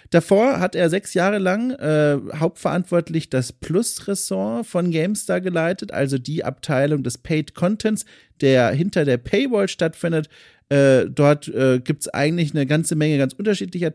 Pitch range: 140-185 Hz